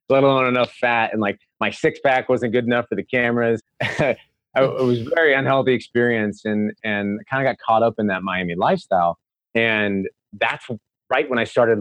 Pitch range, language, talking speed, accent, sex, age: 100-125 Hz, English, 195 wpm, American, male, 30-49